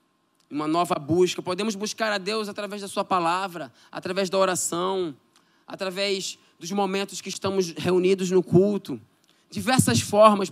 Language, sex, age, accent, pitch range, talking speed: Portuguese, male, 20-39, Brazilian, 180-210 Hz, 135 wpm